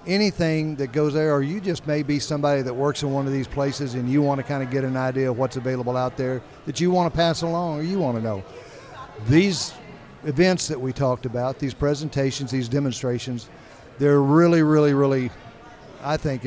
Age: 50-69